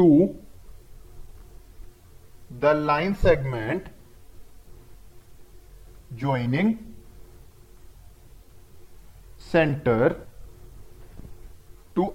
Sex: male